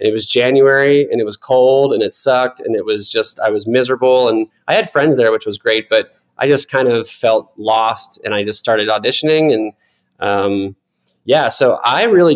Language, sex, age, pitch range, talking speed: English, male, 20-39, 110-140 Hz, 210 wpm